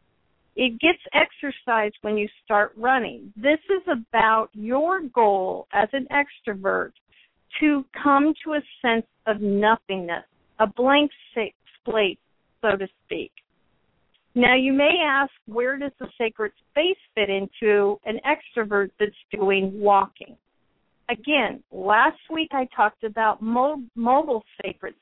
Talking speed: 125 wpm